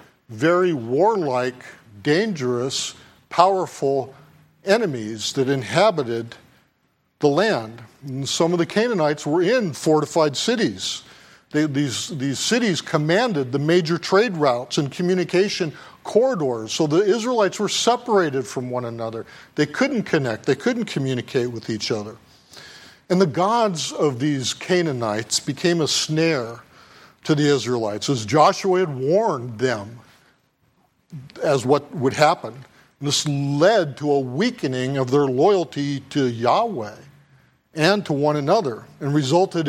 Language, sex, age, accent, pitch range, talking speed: English, male, 50-69, American, 135-180 Hz, 125 wpm